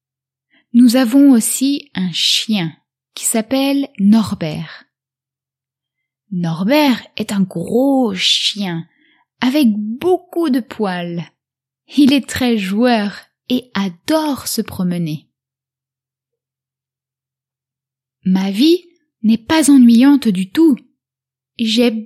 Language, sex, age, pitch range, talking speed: English, female, 20-39, 160-250 Hz, 90 wpm